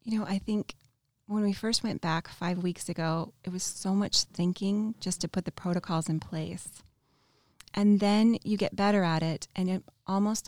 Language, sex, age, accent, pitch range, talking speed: English, female, 30-49, American, 155-195 Hz, 195 wpm